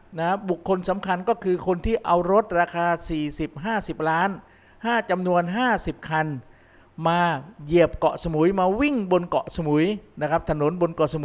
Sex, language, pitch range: male, Thai, 150-180 Hz